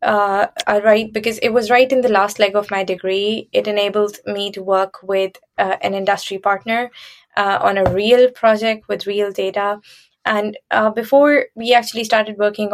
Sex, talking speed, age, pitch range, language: female, 180 wpm, 20-39, 195-220 Hz, English